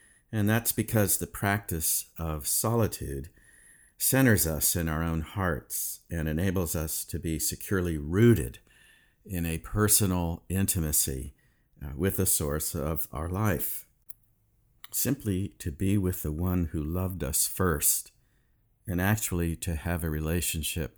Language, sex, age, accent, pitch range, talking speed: English, male, 50-69, American, 80-100 Hz, 130 wpm